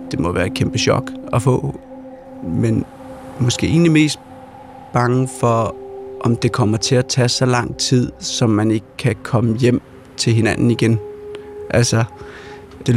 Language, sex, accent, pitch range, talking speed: Danish, male, native, 115-140 Hz, 155 wpm